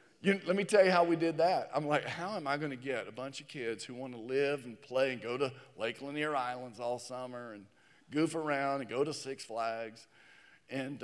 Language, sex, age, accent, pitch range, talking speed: English, male, 50-69, American, 130-165 Hz, 235 wpm